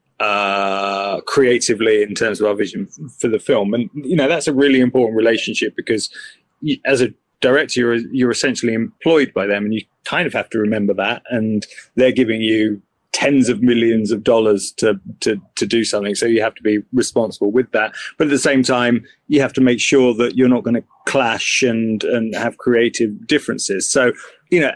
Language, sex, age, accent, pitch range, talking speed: English, male, 30-49, British, 110-130 Hz, 205 wpm